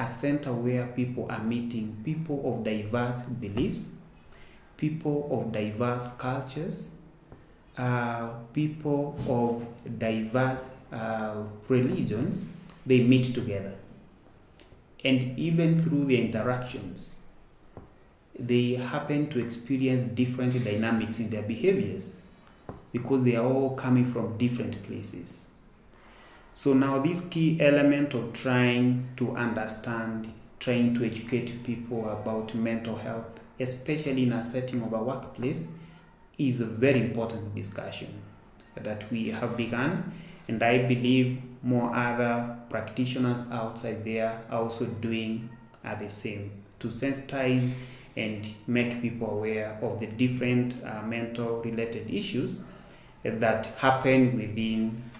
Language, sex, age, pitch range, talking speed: English, male, 30-49, 115-130 Hz, 115 wpm